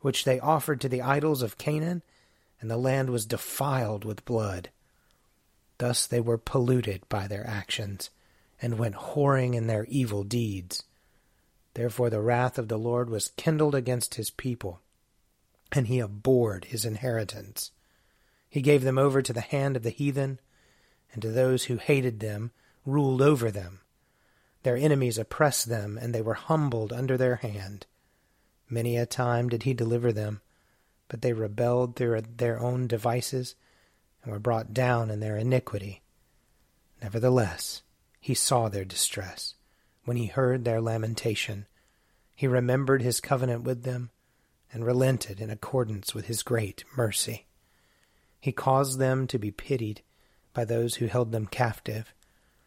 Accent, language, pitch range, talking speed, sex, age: American, English, 110-130 Hz, 150 wpm, male, 30-49